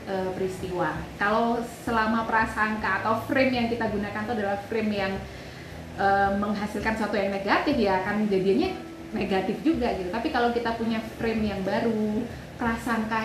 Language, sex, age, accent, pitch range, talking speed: Indonesian, female, 20-39, native, 195-245 Hz, 145 wpm